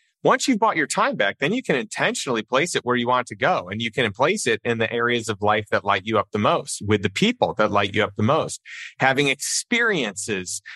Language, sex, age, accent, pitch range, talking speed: English, male, 30-49, American, 105-140 Hz, 245 wpm